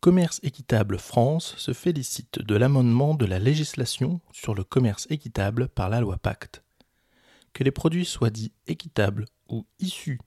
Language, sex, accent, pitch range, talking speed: French, male, French, 110-145 Hz, 150 wpm